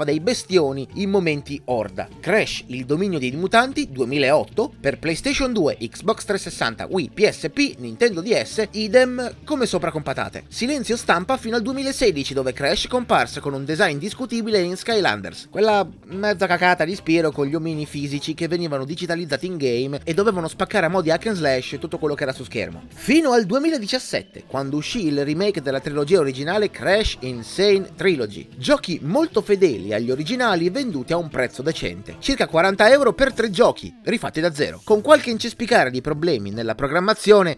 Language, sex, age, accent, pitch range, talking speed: Italian, male, 30-49, native, 140-210 Hz, 170 wpm